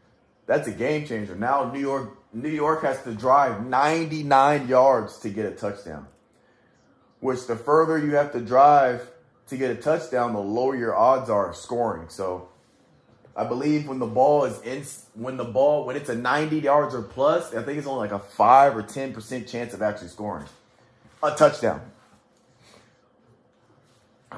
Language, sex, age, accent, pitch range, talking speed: English, male, 30-49, American, 100-140 Hz, 170 wpm